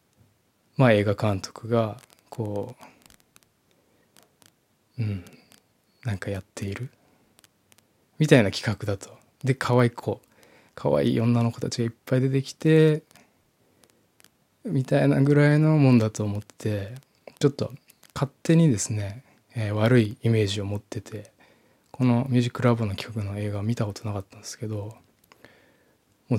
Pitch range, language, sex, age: 105-135 Hz, Japanese, male, 20-39